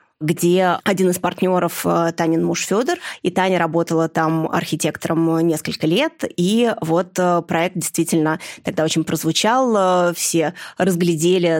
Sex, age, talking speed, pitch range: female, 20-39, 120 wpm, 165-195 Hz